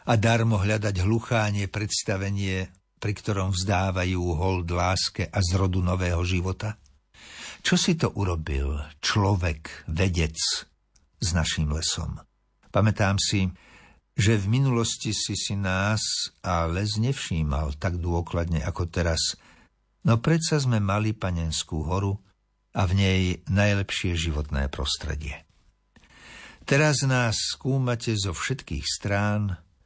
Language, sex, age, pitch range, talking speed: Slovak, male, 60-79, 85-110 Hz, 115 wpm